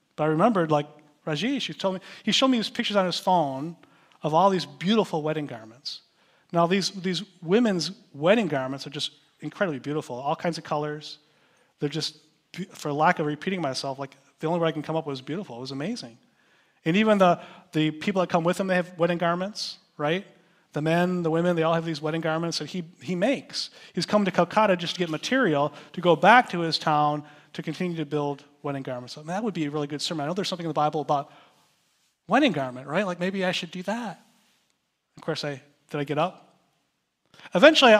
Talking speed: 220 wpm